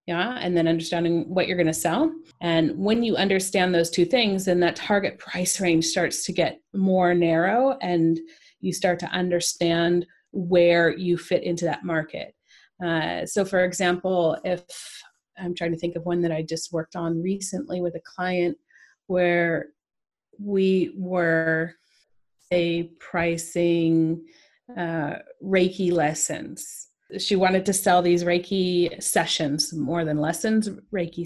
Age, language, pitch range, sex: 30-49, English, 170-190 Hz, female